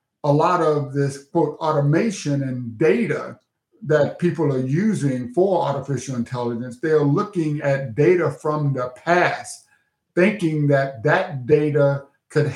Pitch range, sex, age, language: 140-165 Hz, male, 50-69, English